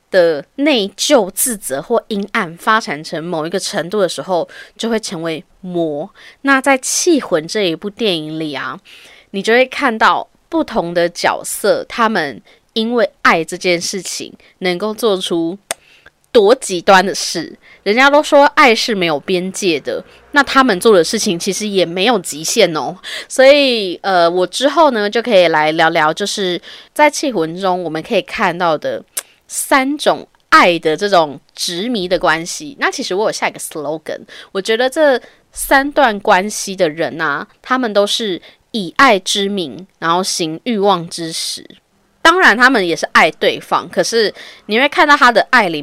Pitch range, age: 175-255 Hz, 20-39